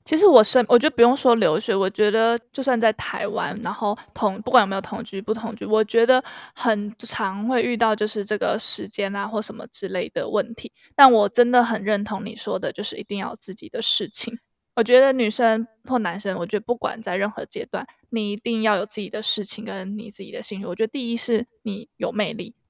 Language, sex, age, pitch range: Chinese, female, 20-39, 210-240 Hz